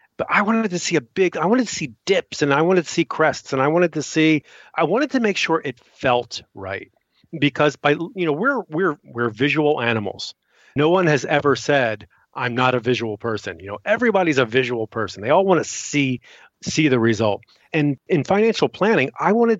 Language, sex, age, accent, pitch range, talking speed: English, male, 40-59, American, 115-155 Hz, 215 wpm